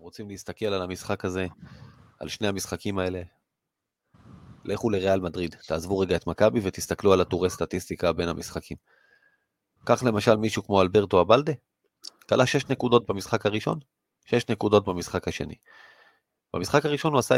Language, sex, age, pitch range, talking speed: Hebrew, male, 30-49, 95-120 Hz, 140 wpm